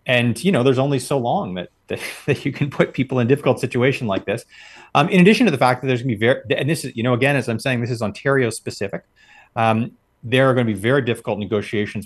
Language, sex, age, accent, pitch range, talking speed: English, male, 30-49, American, 105-130 Hz, 270 wpm